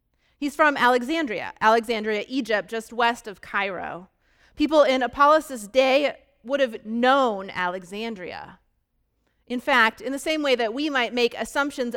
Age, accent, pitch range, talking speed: 30-49, American, 205-265 Hz, 140 wpm